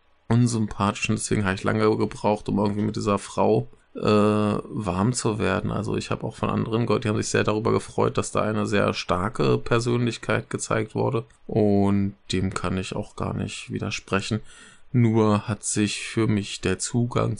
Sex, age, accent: male, 20-39, German